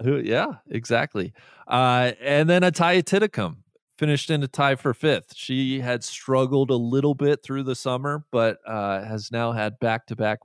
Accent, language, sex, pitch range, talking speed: American, English, male, 105-145 Hz, 170 wpm